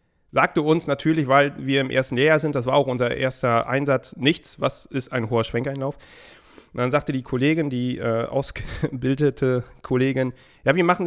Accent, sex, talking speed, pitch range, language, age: German, male, 180 wpm, 130-160 Hz, German, 30-49